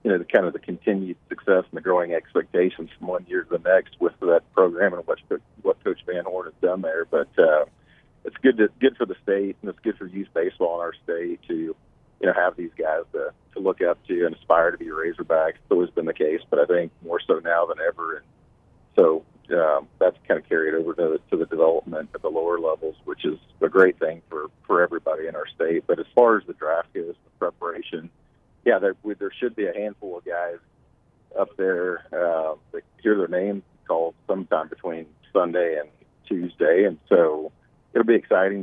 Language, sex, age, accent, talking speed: English, male, 50-69, American, 220 wpm